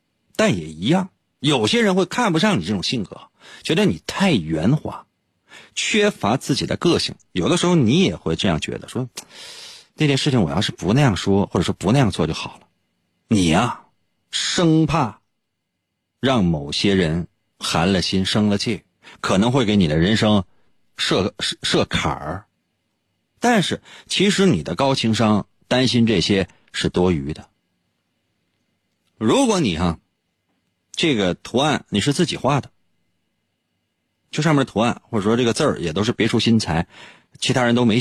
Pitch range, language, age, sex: 90-145 Hz, Chinese, 50-69, male